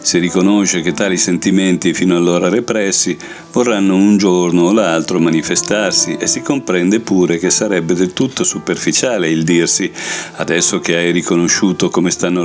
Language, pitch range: Italian, 85-95 Hz